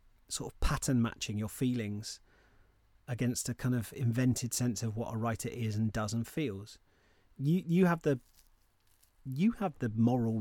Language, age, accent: English, 30-49, British